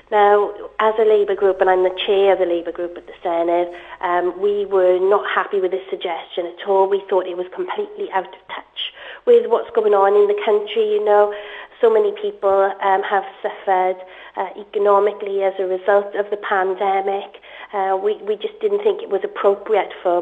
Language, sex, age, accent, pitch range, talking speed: English, female, 40-59, British, 185-205 Hz, 200 wpm